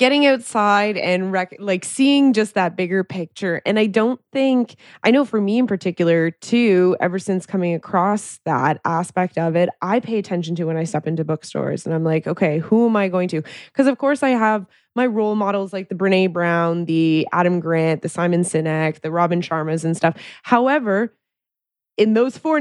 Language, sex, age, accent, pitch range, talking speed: English, female, 20-39, American, 165-220 Hz, 195 wpm